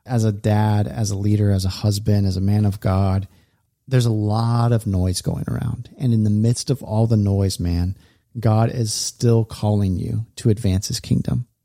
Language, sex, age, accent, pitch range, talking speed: English, male, 30-49, American, 105-120 Hz, 200 wpm